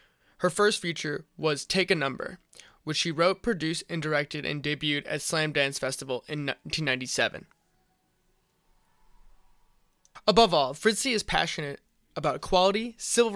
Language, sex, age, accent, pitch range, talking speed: English, male, 20-39, American, 150-180 Hz, 130 wpm